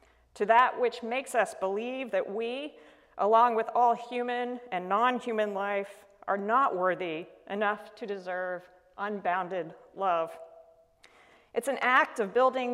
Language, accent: English, American